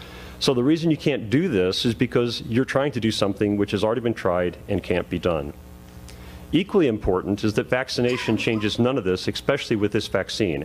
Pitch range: 95-125 Hz